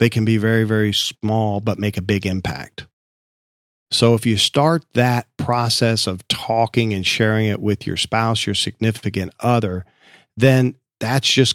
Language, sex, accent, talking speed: English, male, American, 160 wpm